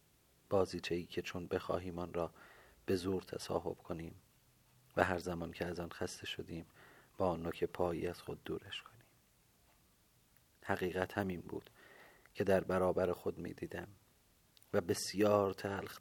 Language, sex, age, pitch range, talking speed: Persian, male, 40-59, 90-110 Hz, 145 wpm